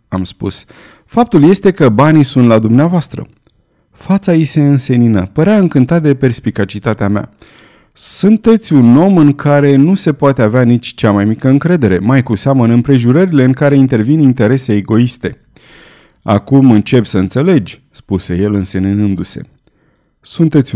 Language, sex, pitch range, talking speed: Romanian, male, 110-150 Hz, 145 wpm